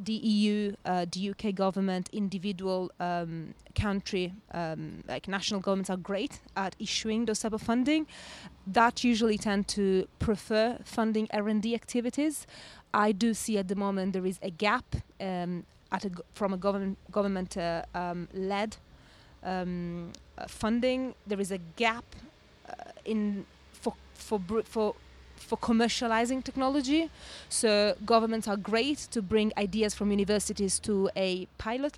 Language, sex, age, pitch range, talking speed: English, female, 20-39, 185-220 Hz, 145 wpm